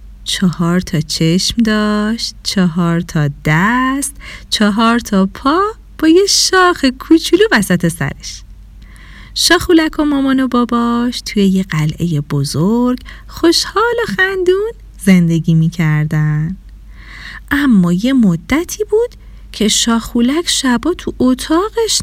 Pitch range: 190-285 Hz